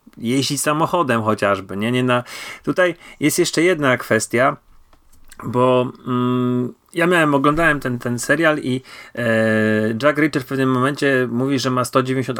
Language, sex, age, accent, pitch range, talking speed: Polish, male, 40-59, native, 125-145 Hz, 145 wpm